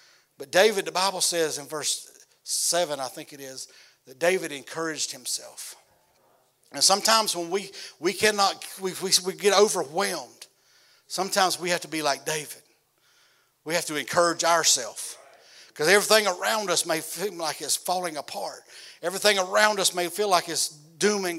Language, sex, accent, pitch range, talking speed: English, male, American, 145-185 Hz, 165 wpm